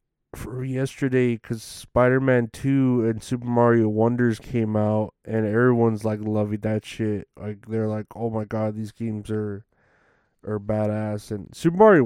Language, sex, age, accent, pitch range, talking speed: English, male, 20-39, American, 105-115 Hz, 155 wpm